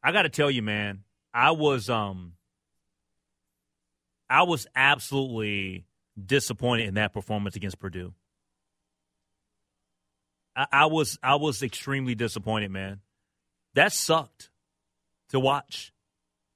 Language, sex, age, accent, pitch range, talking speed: English, male, 30-49, American, 95-155 Hz, 110 wpm